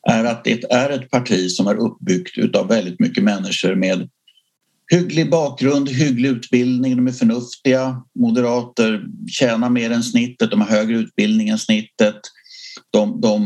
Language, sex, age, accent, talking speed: English, male, 50-69, Swedish, 150 wpm